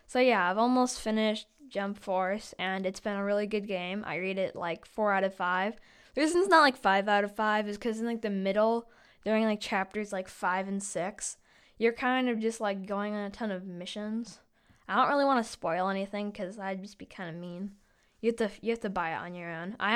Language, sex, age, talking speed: English, female, 10-29, 245 wpm